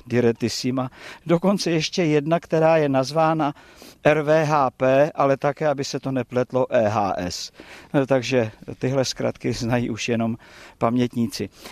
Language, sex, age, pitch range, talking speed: Czech, male, 50-69, 120-155 Hz, 115 wpm